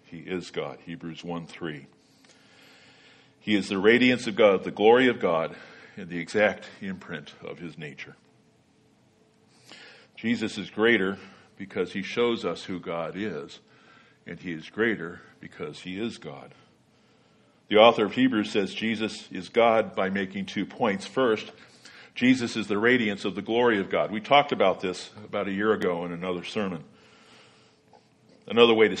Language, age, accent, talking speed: English, 50-69, American, 160 wpm